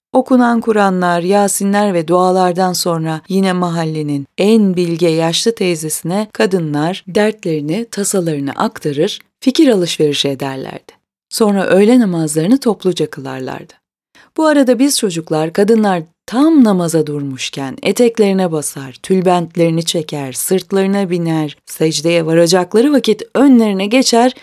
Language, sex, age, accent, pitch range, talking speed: Turkish, female, 30-49, native, 160-215 Hz, 105 wpm